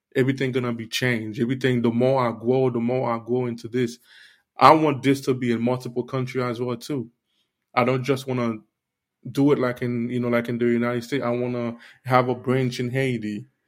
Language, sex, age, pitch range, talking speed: English, male, 20-39, 120-140 Hz, 210 wpm